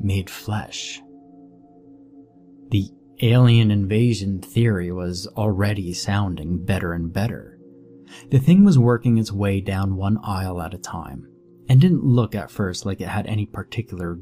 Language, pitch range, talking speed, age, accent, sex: English, 90-130 Hz, 145 wpm, 30-49, American, male